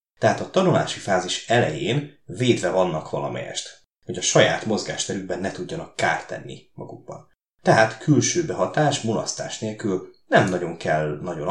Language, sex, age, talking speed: Hungarian, male, 30-49, 135 wpm